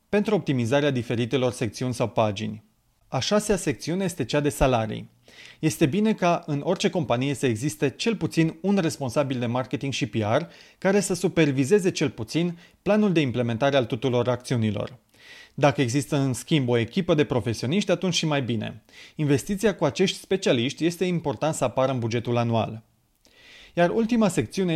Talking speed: 160 wpm